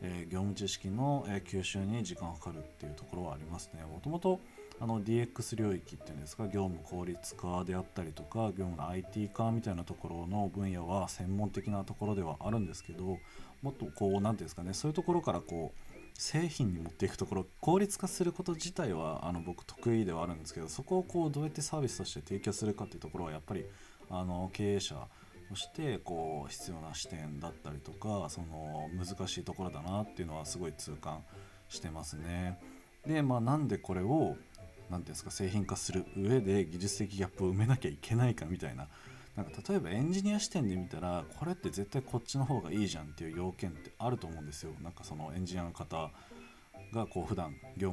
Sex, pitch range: male, 85-115 Hz